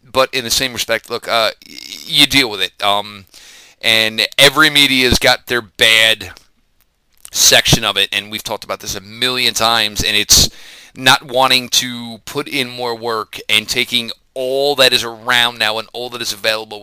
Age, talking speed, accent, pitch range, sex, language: 30-49, 180 wpm, American, 105-125 Hz, male, English